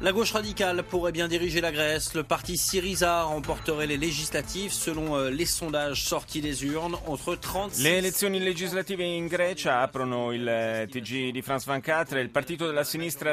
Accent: native